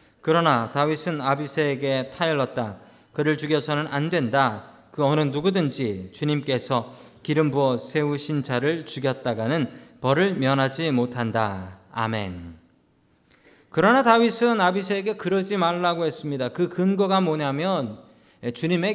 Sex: male